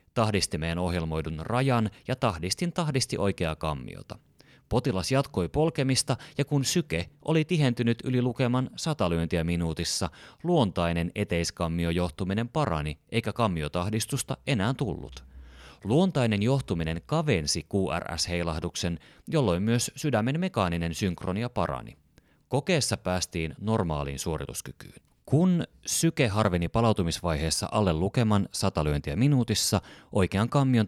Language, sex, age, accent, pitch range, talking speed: Finnish, male, 30-49, native, 85-125 Hz, 105 wpm